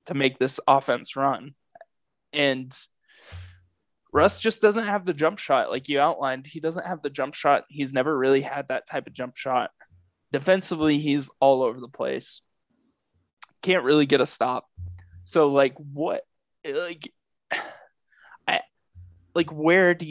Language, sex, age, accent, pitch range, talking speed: English, male, 20-39, American, 130-165 Hz, 150 wpm